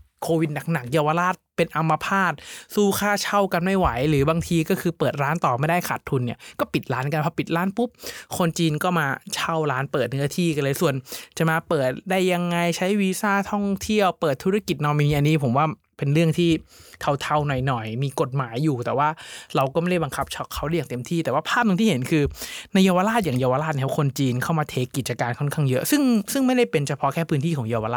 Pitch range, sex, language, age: 135-175 Hz, male, Thai, 20-39